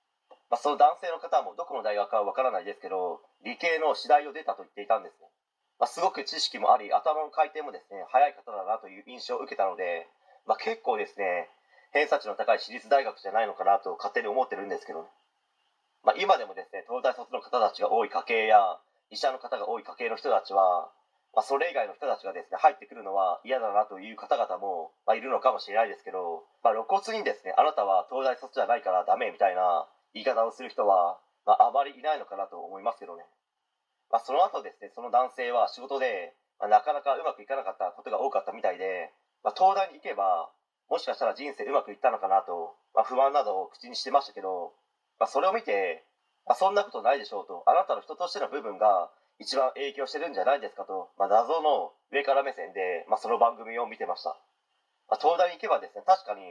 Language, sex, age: Japanese, male, 30-49